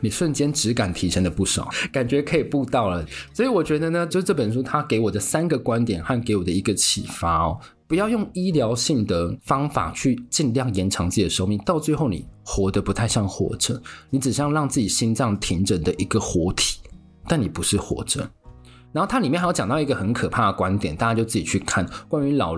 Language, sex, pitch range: Chinese, male, 95-140 Hz